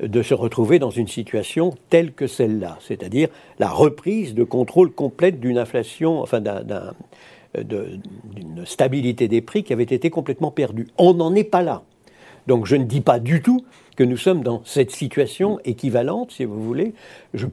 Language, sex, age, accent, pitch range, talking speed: French, male, 60-79, French, 115-165 Hz, 180 wpm